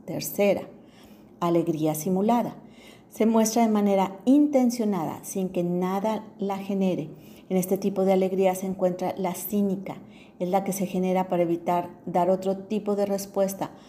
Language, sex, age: Spanish, female, 40-59